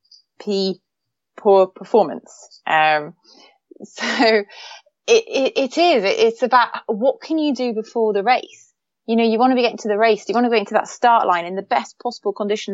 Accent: British